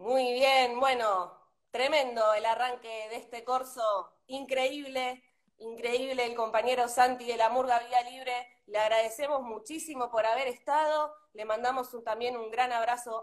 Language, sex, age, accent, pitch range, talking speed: Spanish, female, 20-39, Argentinian, 235-290 Hz, 140 wpm